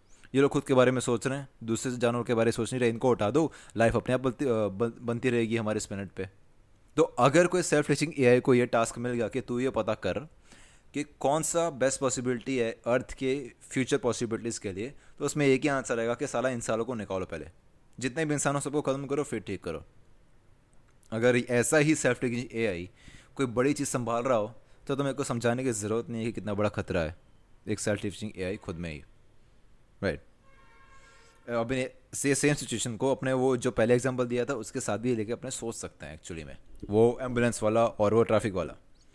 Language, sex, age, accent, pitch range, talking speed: Hindi, male, 20-39, native, 110-130 Hz, 210 wpm